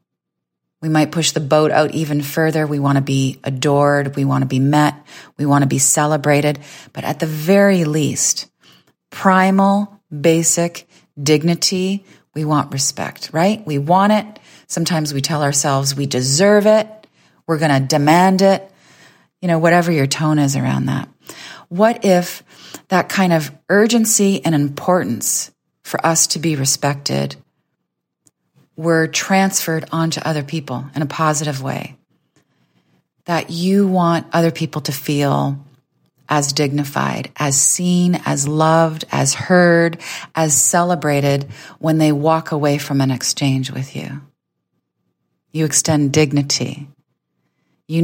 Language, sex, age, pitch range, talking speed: English, female, 30-49, 140-165 Hz, 135 wpm